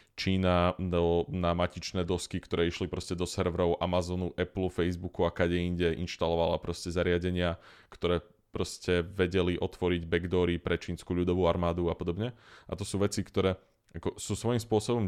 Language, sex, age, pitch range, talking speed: Slovak, male, 20-39, 85-100 Hz, 145 wpm